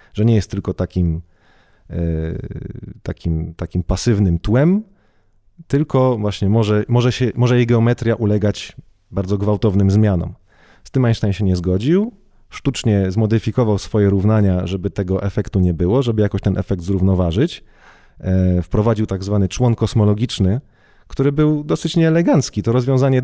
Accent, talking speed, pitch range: native, 135 wpm, 95-120 Hz